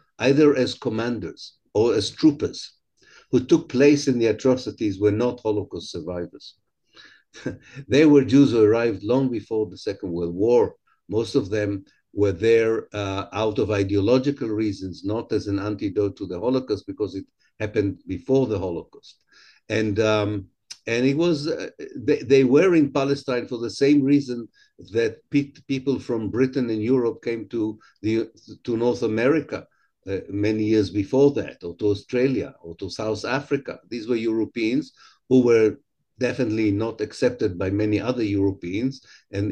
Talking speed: 155 wpm